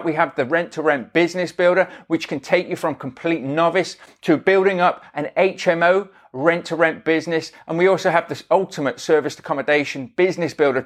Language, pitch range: English, 150-185 Hz